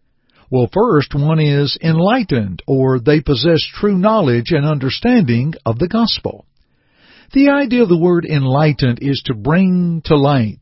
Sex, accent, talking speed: male, American, 145 wpm